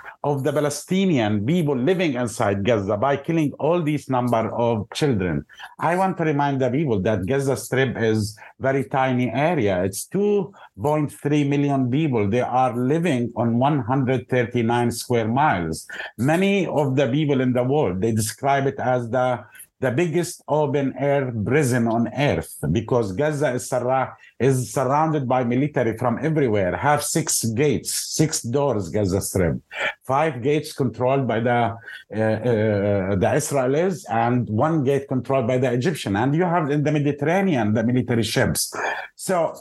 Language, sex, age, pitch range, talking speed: English, male, 50-69, 120-145 Hz, 150 wpm